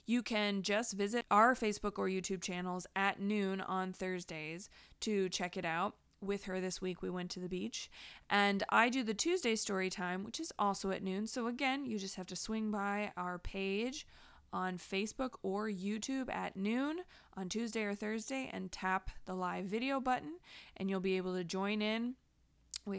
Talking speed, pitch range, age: 190 wpm, 190-245 Hz, 20-39